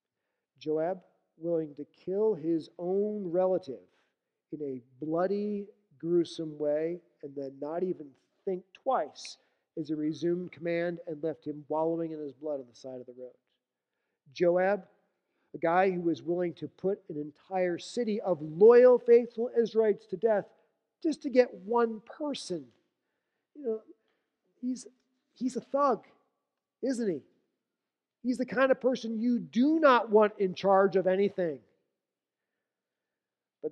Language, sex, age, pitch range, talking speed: English, male, 40-59, 155-215 Hz, 140 wpm